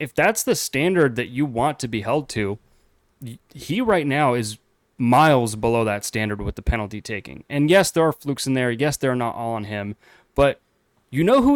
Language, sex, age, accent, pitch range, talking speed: English, male, 20-39, American, 115-160 Hz, 210 wpm